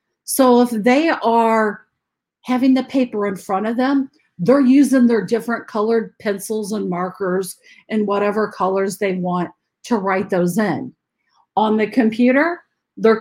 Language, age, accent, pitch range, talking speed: English, 50-69, American, 190-235 Hz, 145 wpm